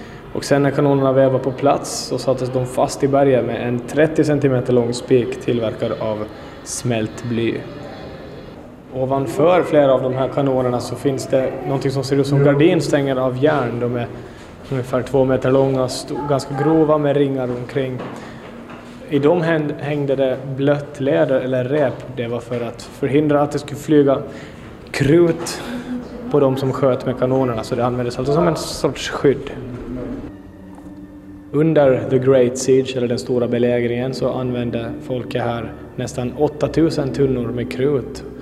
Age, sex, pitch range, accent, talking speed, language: 20-39, male, 120-140 Hz, native, 155 wpm, Swedish